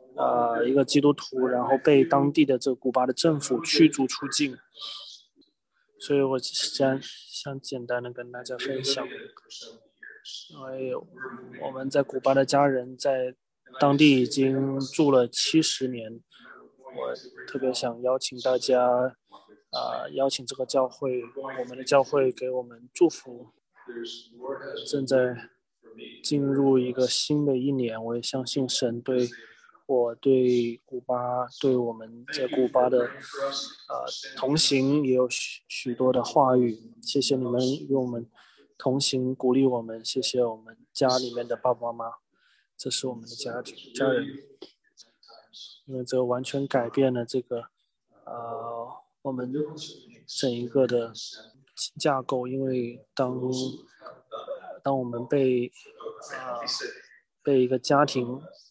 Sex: male